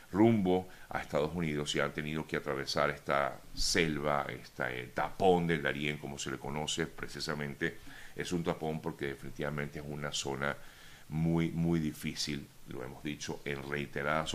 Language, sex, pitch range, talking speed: Spanish, male, 70-85 Hz, 150 wpm